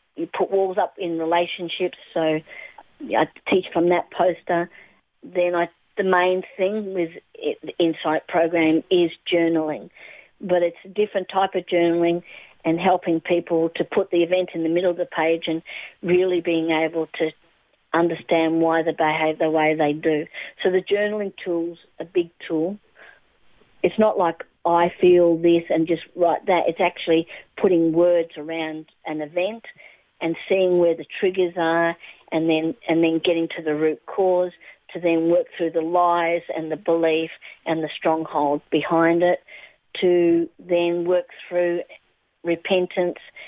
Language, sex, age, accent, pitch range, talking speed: English, female, 50-69, Australian, 165-185 Hz, 160 wpm